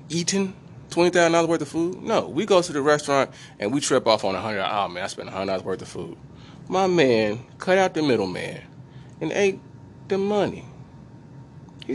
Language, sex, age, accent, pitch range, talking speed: English, male, 30-49, American, 120-155 Hz, 180 wpm